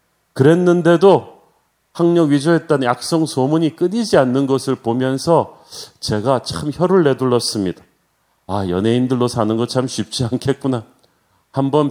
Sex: male